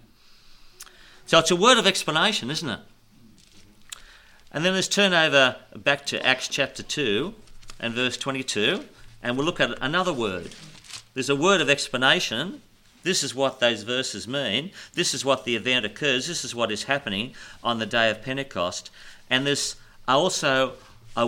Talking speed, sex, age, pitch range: 165 wpm, male, 40-59, 115-145 Hz